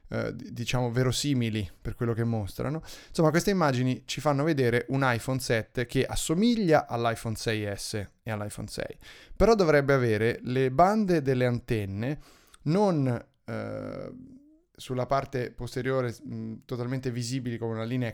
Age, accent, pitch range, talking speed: 30-49, native, 115-140 Hz, 130 wpm